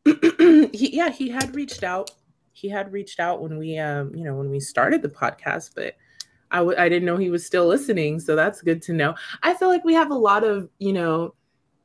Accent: American